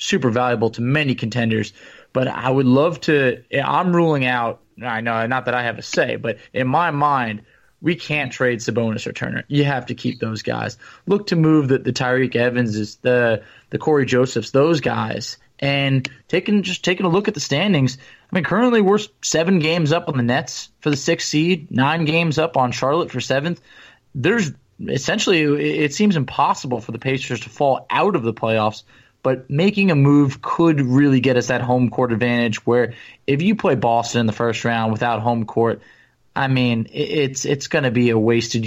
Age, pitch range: 20-39, 120-150 Hz